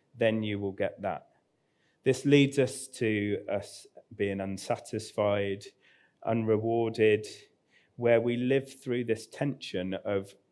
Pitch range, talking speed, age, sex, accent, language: 95-115 Hz, 115 wpm, 30-49, male, British, English